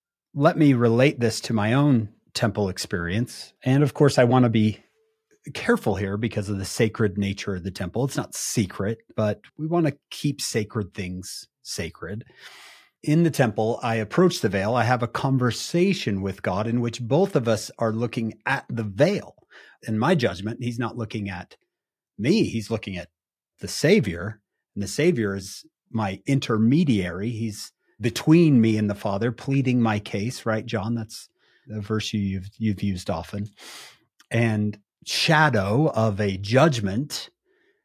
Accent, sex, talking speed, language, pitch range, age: American, male, 160 wpm, English, 105-140 Hz, 40-59